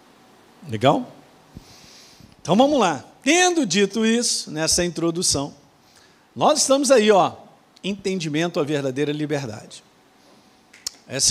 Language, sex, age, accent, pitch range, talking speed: Portuguese, male, 50-69, Brazilian, 165-225 Hz, 95 wpm